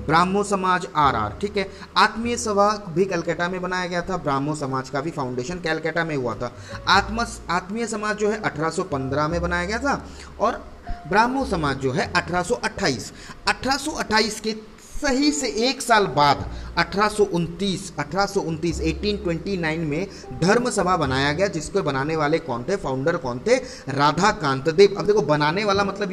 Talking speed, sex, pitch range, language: 160 wpm, male, 145-200 Hz, Hindi